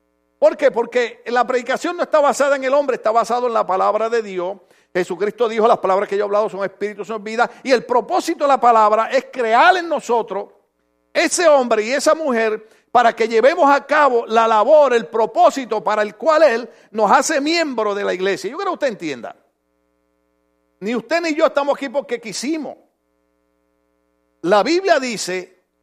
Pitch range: 215-300 Hz